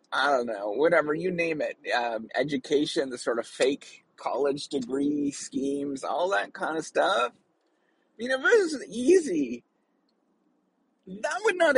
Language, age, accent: English, 30-49, American